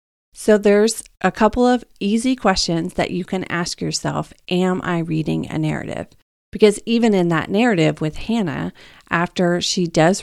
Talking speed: 160 wpm